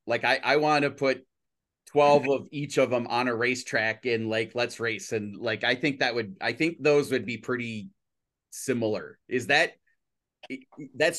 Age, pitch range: 30-49, 115-145 Hz